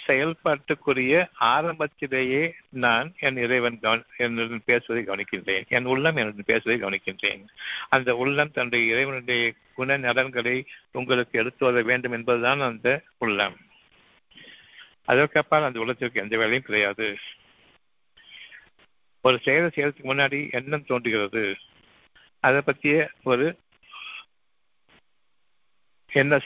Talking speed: 100 wpm